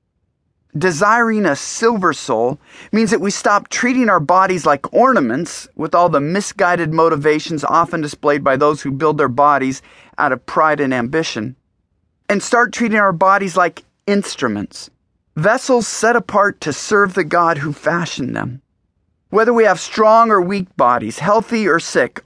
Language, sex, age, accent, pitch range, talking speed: English, male, 30-49, American, 145-205 Hz, 155 wpm